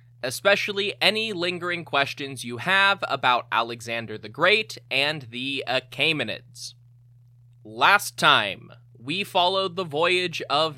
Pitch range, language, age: 120-165 Hz, English, 20-39